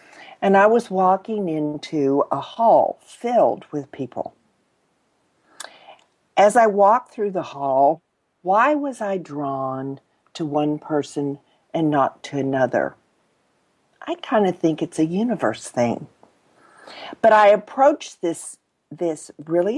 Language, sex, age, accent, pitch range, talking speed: English, female, 50-69, American, 145-225 Hz, 125 wpm